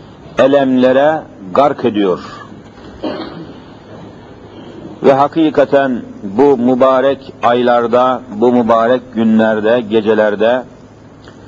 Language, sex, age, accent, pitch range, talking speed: Turkish, male, 50-69, native, 125-155 Hz, 65 wpm